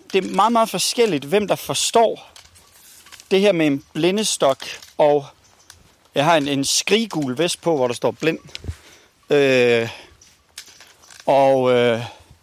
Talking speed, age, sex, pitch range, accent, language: 130 wpm, 40-59, male, 140-220 Hz, native, Danish